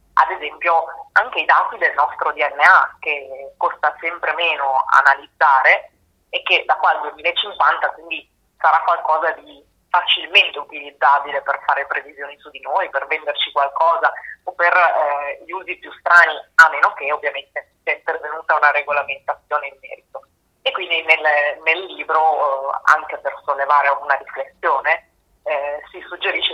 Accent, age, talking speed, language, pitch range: native, 20-39, 145 wpm, Italian, 140-160 Hz